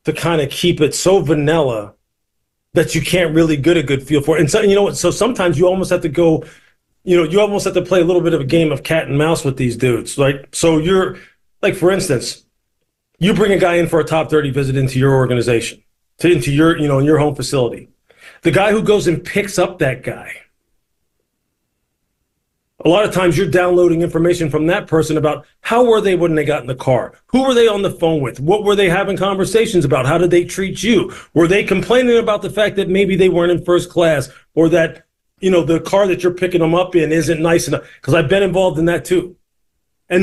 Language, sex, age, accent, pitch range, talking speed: English, male, 40-59, American, 150-190 Hz, 240 wpm